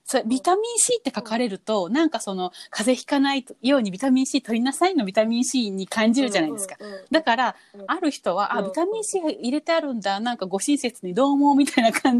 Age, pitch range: 30-49, 195-285 Hz